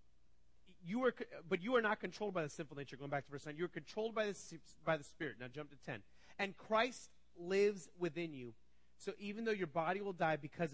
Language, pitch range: English, 110-180 Hz